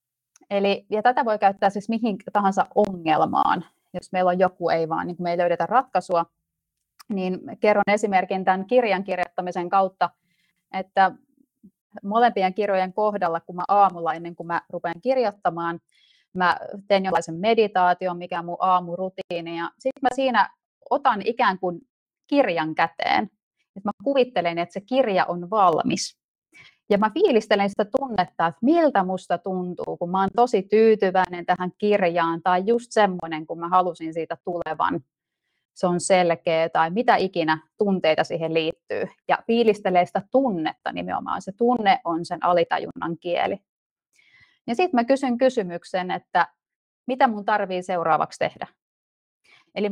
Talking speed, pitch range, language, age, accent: 145 wpm, 175-215 Hz, Finnish, 30-49, native